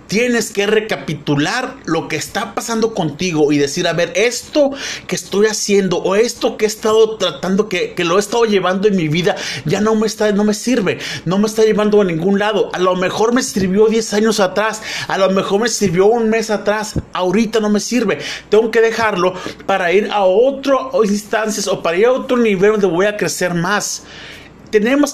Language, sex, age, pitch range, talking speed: Spanish, male, 40-59, 175-220 Hz, 205 wpm